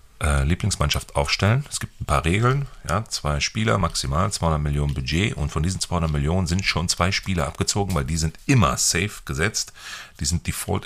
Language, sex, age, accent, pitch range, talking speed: German, male, 40-59, German, 75-105 Hz, 175 wpm